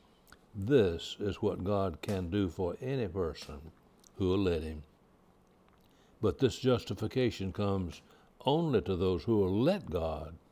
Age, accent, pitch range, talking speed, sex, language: 60-79, American, 85-110 Hz, 135 wpm, male, English